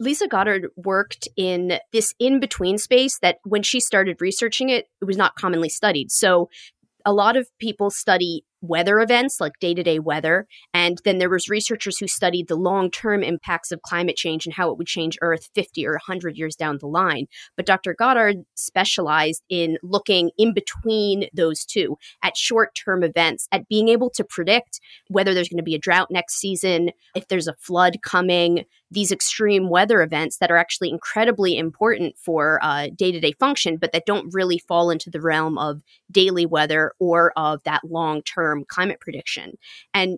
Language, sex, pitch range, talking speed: English, female, 165-200 Hz, 175 wpm